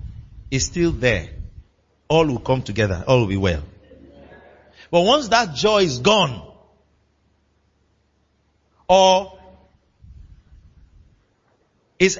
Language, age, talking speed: English, 50-69, 95 wpm